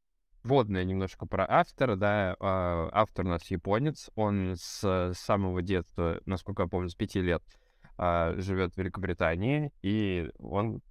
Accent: native